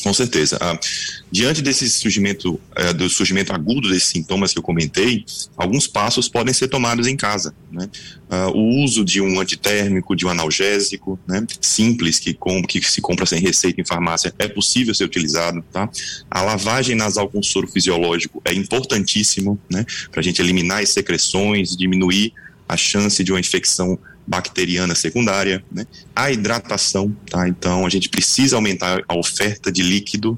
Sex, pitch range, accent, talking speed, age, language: male, 90-105 Hz, Brazilian, 165 wpm, 20-39, Portuguese